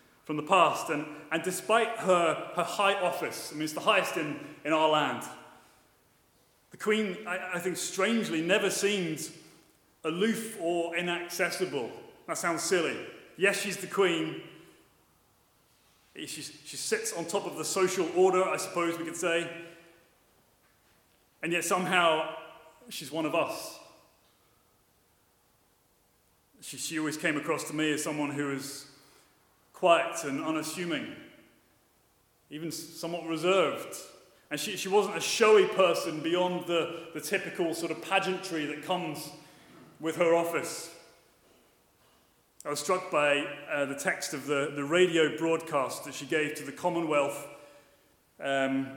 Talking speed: 135 wpm